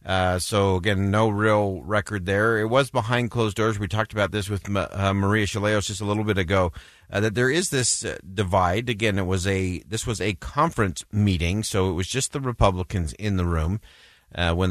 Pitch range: 90-120 Hz